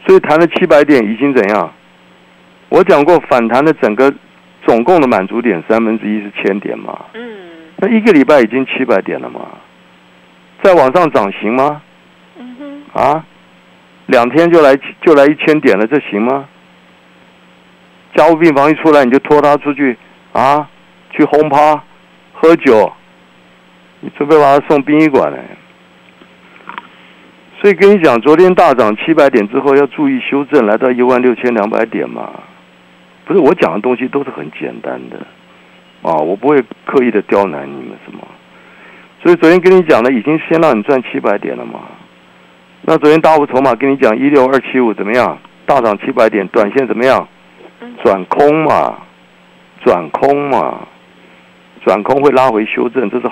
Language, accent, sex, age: Chinese, native, male, 60-79